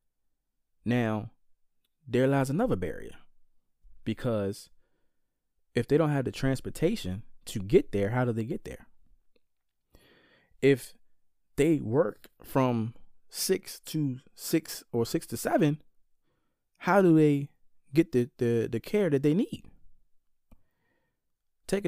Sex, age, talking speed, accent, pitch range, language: male, 20-39, 115 wpm, American, 110-155 Hz, English